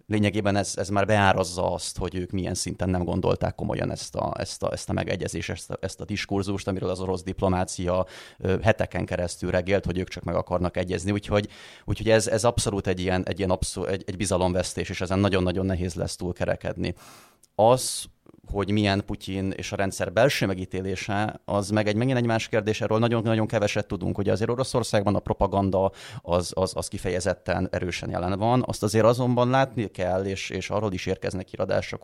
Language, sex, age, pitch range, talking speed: Hungarian, male, 30-49, 90-105 Hz, 190 wpm